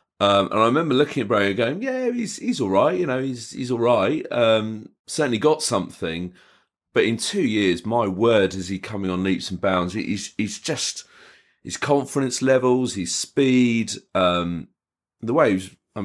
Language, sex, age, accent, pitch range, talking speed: English, male, 30-49, British, 90-120 Hz, 190 wpm